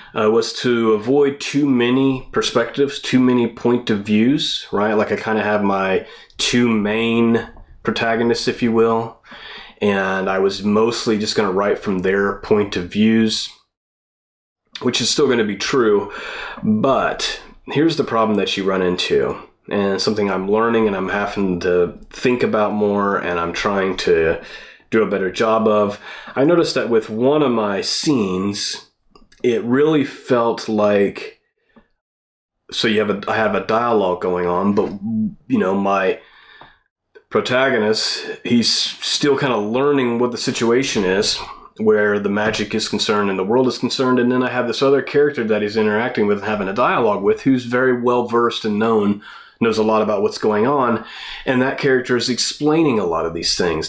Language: English